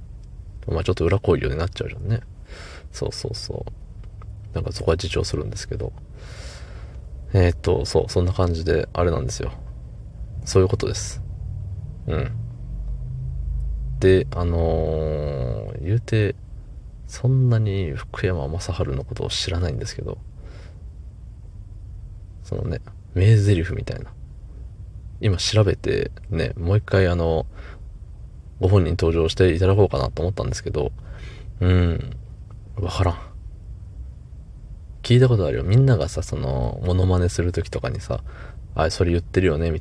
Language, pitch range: Japanese, 80-110 Hz